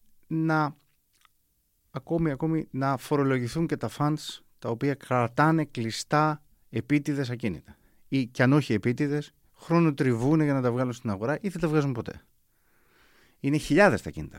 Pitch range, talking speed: 115-150 Hz, 150 wpm